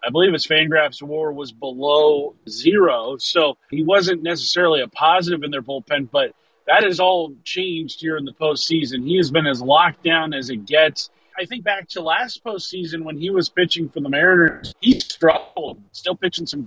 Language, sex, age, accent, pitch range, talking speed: English, male, 30-49, American, 140-170 Hz, 190 wpm